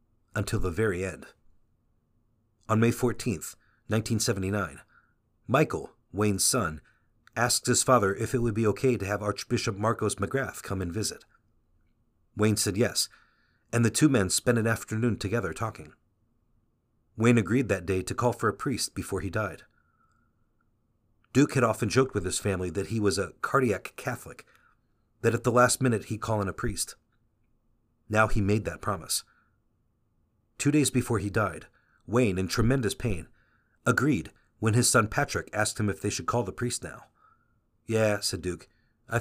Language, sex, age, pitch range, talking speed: English, male, 40-59, 100-120 Hz, 160 wpm